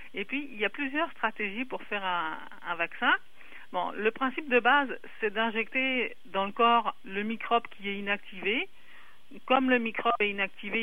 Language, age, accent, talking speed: French, 50-69, French, 175 wpm